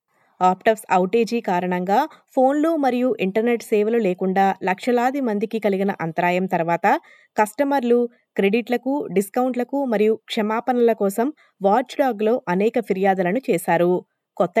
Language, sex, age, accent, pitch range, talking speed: Telugu, female, 20-39, native, 190-245 Hz, 105 wpm